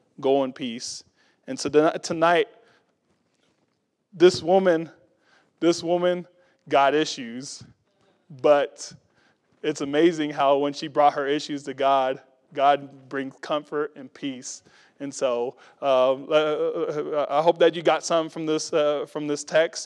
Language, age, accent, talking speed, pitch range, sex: English, 20-39, American, 125 wpm, 135-160 Hz, male